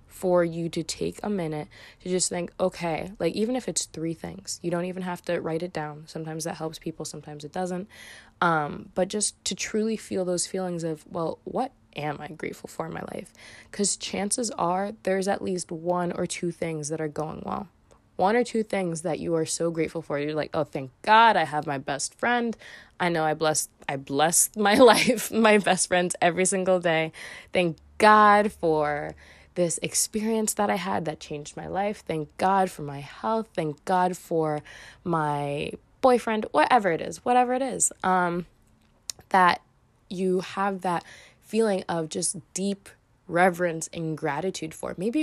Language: English